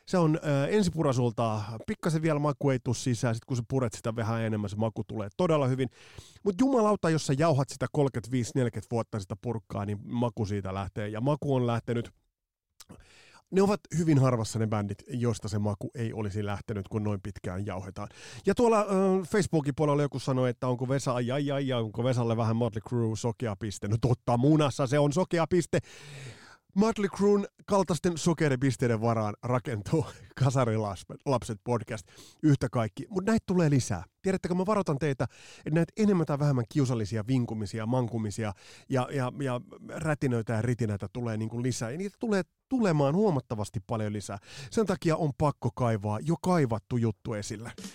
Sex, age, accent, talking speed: male, 30-49, native, 170 wpm